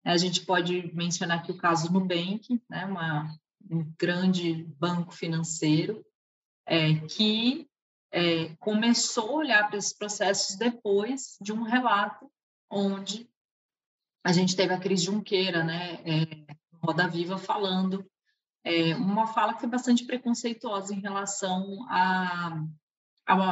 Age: 20-39